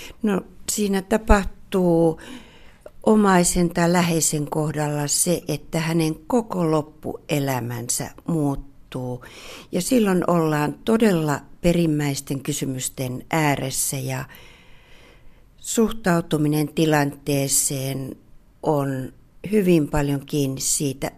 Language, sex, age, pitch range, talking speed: Finnish, female, 60-79, 140-180 Hz, 80 wpm